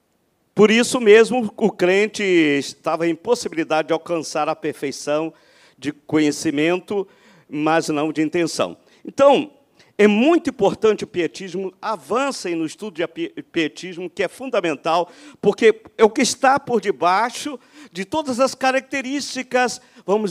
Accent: Brazilian